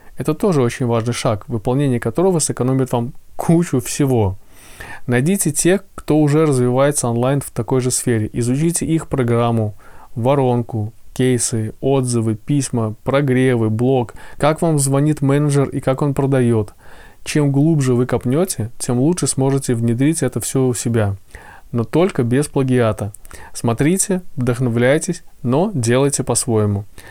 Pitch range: 120-150 Hz